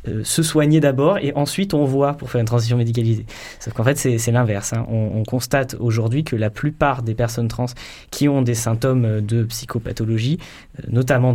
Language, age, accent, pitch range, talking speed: French, 20-39, French, 110-125 Hz, 190 wpm